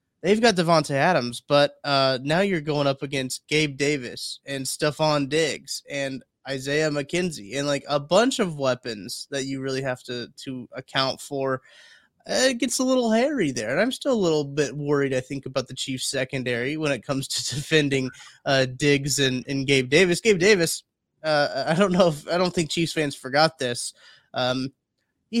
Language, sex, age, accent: English, male, 20-39, American